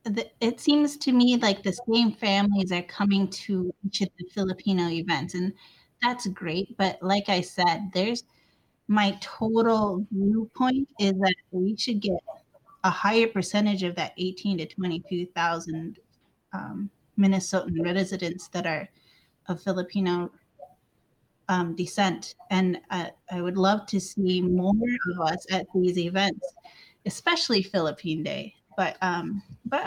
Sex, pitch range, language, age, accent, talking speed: female, 185-215 Hz, English, 30-49, American, 135 wpm